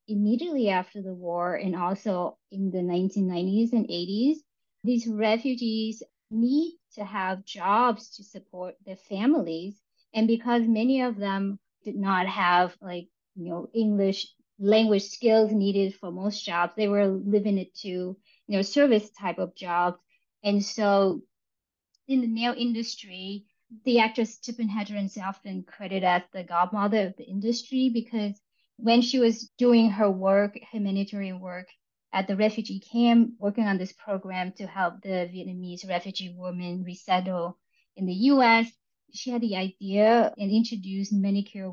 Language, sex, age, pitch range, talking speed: English, female, 30-49, 185-230 Hz, 145 wpm